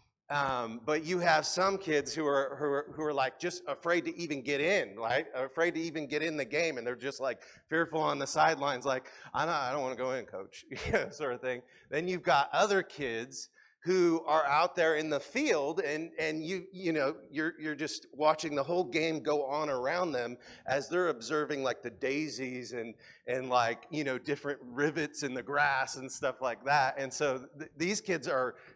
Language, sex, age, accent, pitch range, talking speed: English, male, 40-59, American, 140-180 Hz, 215 wpm